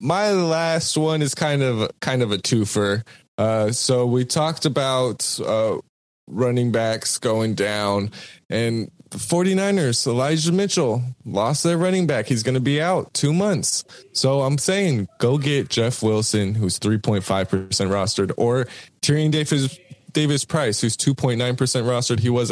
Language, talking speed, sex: English, 150 wpm, male